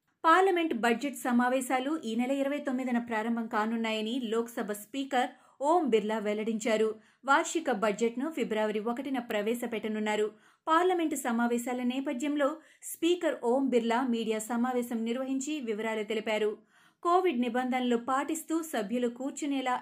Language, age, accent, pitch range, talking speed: Telugu, 30-49, native, 230-280 Hz, 95 wpm